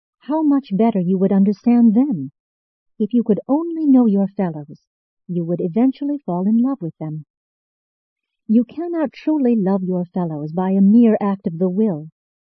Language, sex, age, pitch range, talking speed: English, female, 50-69, 175-255 Hz, 170 wpm